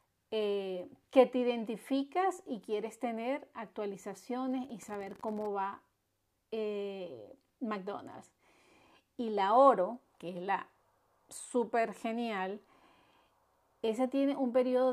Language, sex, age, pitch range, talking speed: Spanish, female, 40-59, 205-260 Hz, 105 wpm